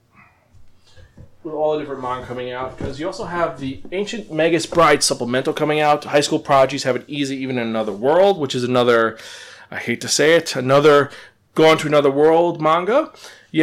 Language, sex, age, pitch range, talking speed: English, male, 20-39, 125-175 Hz, 190 wpm